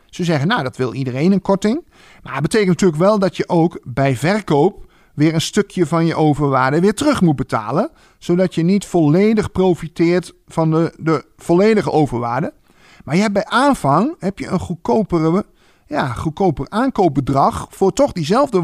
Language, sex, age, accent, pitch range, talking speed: Dutch, male, 50-69, Dutch, 155-210 Hz, 170 wpm